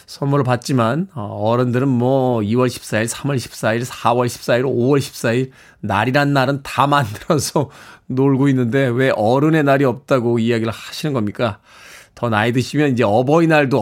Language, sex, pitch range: Korean, male, 130-185 Hz